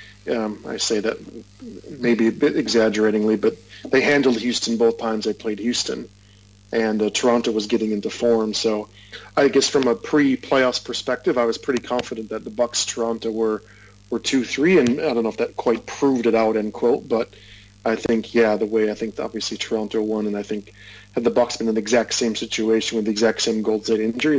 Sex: male